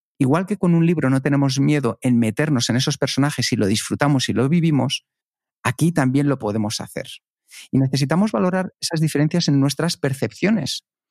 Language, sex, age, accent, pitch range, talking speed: Spanish, male, 50-69, Spanish, 125-165 Hz, 175 wpm